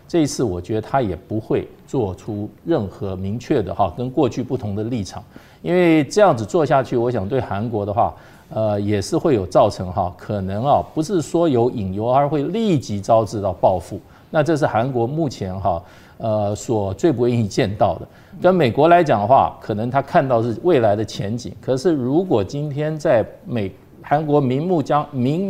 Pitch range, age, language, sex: 105-140 Hz, 50-69, Chinese, male